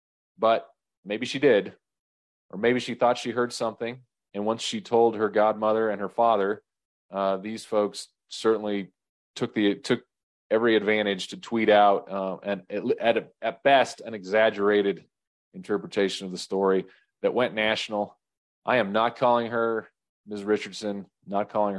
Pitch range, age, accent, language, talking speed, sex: 105-125 Hz, 30-49, American, English, 150 wpm, male